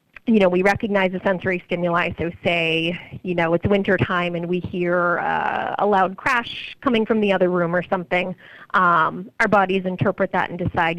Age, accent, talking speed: 40-59, American, 190 wpm